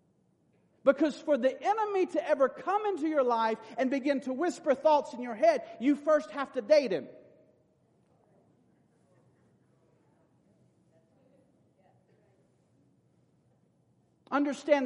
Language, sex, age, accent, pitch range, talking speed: English, male, 50-69, American, 235-290 Hz, 100 wpm